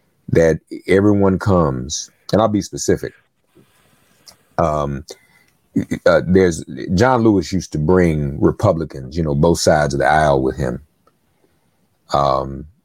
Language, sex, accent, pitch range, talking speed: English, male, American, 70-90 Hz, 120 wpm